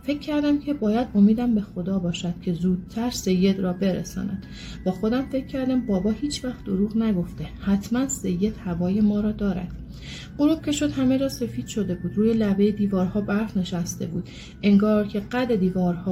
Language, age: Persian, 30-49